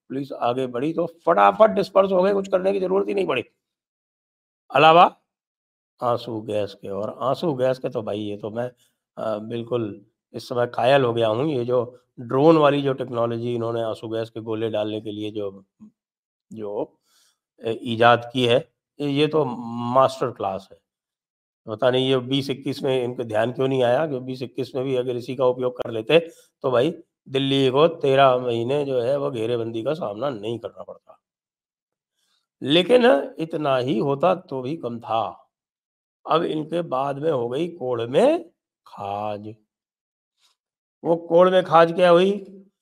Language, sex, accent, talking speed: English, male, Indian, 155 wpm